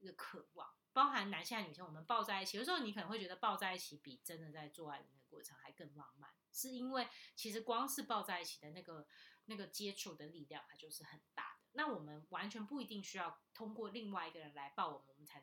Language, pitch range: Chinese, 160-210 Hz